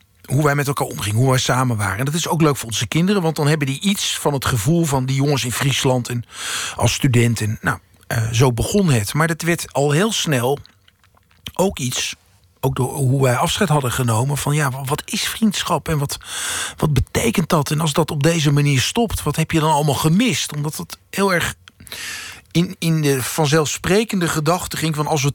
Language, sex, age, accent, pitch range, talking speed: Dutch, male, 50-69, Dutch, 130-170 Hz, 210 wpm